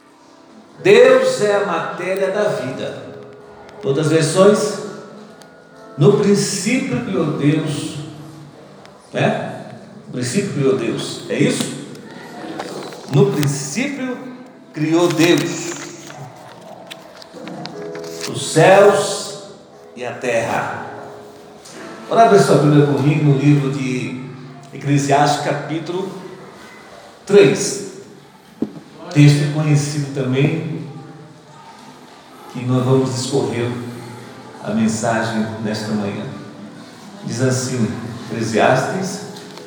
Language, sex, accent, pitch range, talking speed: Portuguese, male, Brazilian, 125-190 Hz, 80 wpm